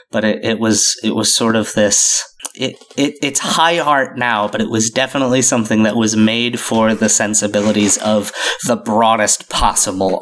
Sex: male